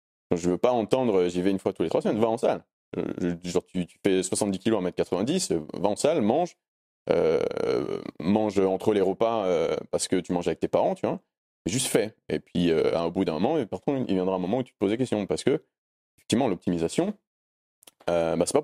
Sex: male